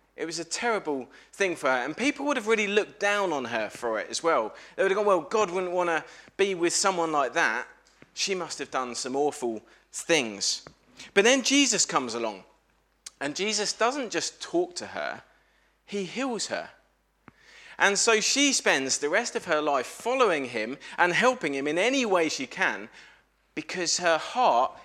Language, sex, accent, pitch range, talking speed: English, male, British, 140-215 Hz, 190 wpm